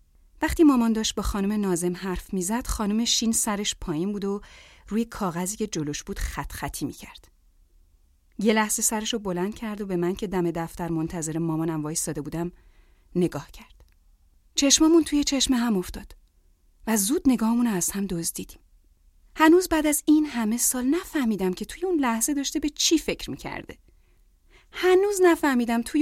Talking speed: 165 wpm